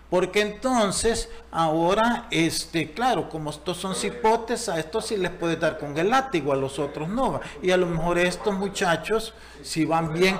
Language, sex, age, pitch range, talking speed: Spanish, male, 50-69, 155-195 Hz, 175 wpm